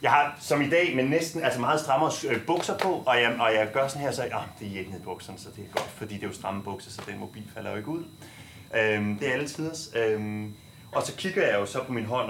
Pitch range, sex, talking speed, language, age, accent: 105-145 Hz, male, 280 wpm, Danish, 30-49, native